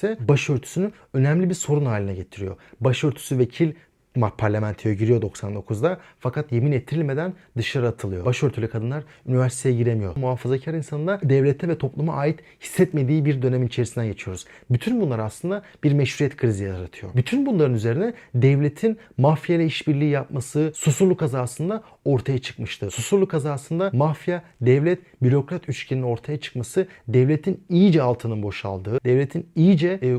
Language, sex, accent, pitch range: Turkish, male, native, 120-160 Hz